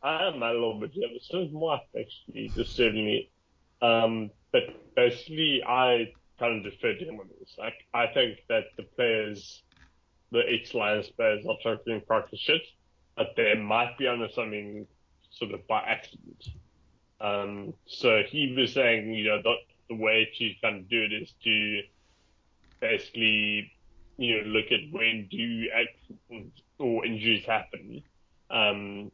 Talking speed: 155 wpm